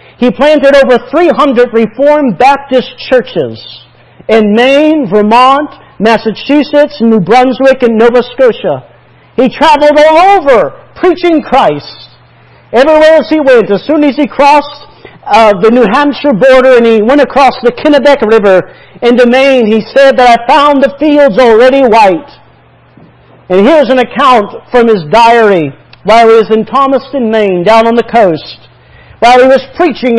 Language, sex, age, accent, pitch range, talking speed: English, male, 50-69, American, 225-280 Hz, 150 wpm